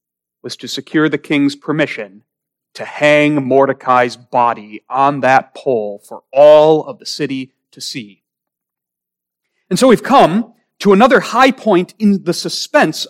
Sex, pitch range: male, 135-230 Hz